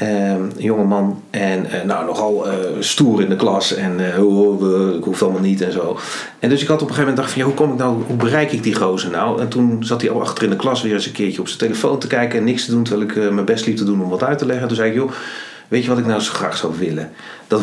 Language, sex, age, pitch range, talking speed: Dutch, male, 40-59, 100-155 Hz, 320 wpm